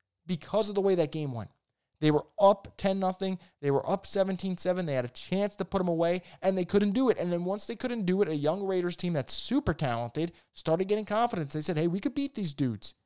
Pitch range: 150-200 Hz